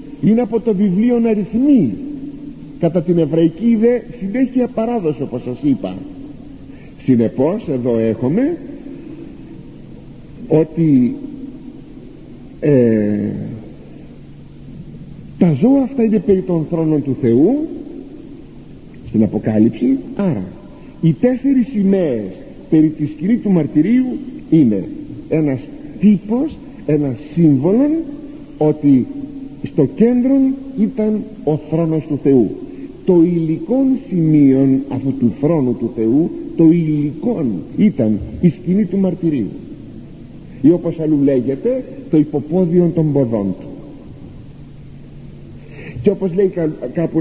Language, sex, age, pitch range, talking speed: Greek, male, 50-69, 145-245 Hz, 100 wpm